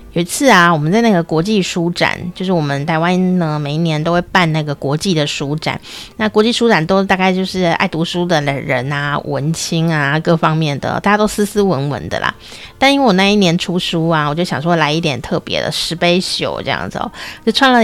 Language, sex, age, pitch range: Chinese, female, 20-39, 155-190 Hz